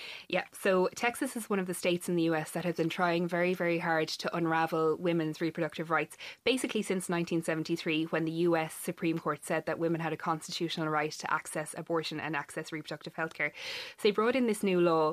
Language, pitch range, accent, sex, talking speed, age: English, 160-190 Hz, Irish, female, 210 wpm, 20-39